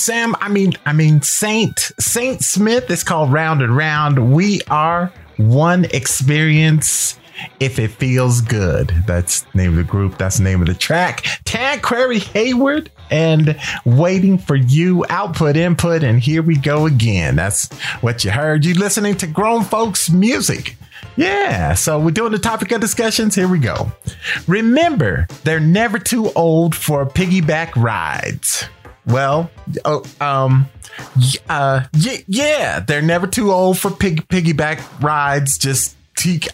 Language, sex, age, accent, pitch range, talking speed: English, male, 40-59, American, 135-195 Hz, 150 wpm